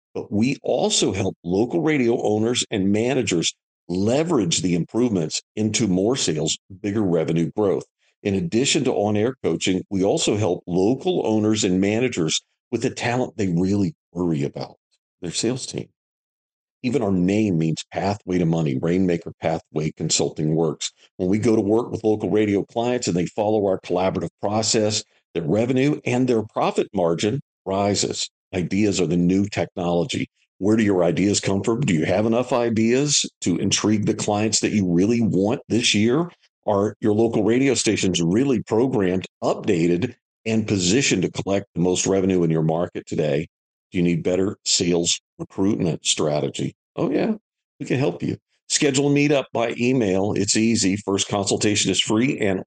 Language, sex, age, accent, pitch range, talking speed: English, male, 50-69, American, 90-110 Hz, 165 wpm